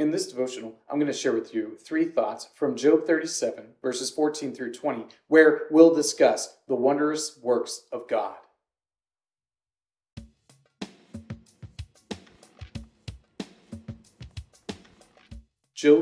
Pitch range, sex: 135-200 Hz, male